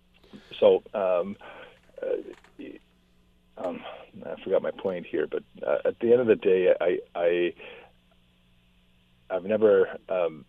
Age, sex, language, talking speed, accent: 40-59, male, English, 125 wpm, American